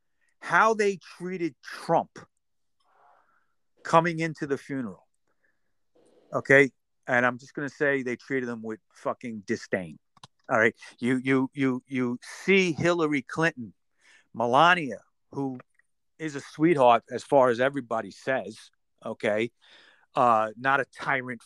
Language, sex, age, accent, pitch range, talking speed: English, male, 50-69, American, 125-165 Hz, 125 wpm